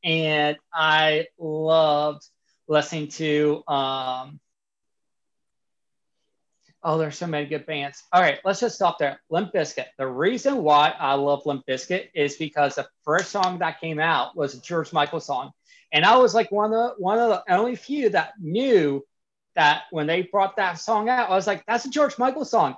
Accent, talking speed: American, 180 wpm